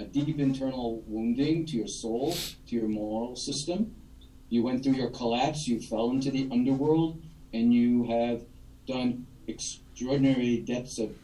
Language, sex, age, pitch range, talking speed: English, male, 50-69, 120-145 Hz, 145 wpm